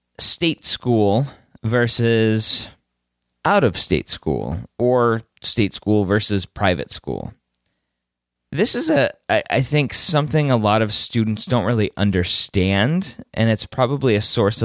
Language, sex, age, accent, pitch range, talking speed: English, male, 20-39, American, 90-120 Hz, 125 wpm